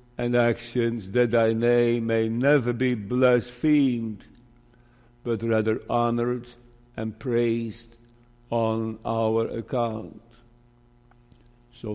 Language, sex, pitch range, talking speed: English, male, 120-130 Hz, 90 wpm